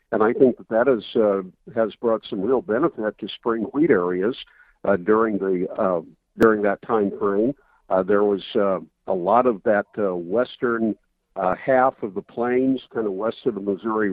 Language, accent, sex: English, American, male